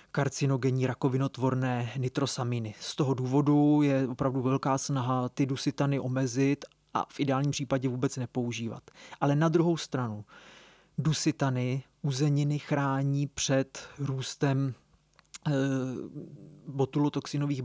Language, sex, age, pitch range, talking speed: Czech, male, 30-49, 135-150 Hz, 100 wpm